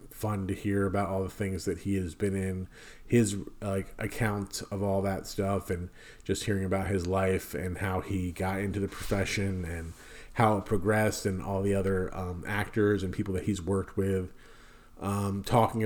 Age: 30-49